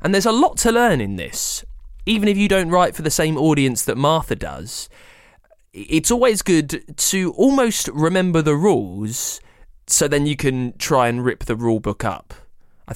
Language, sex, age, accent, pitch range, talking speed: English, male, 20-39, British, 115-165 Hz, 185 wpm